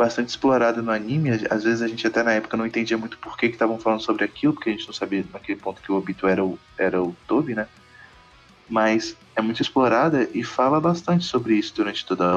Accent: Brazilian